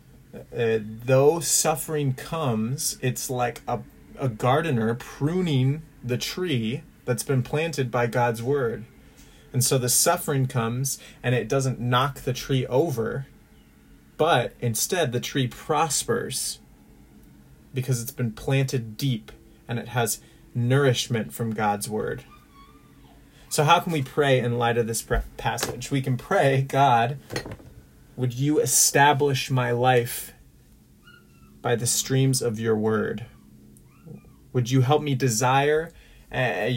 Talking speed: 125 wpm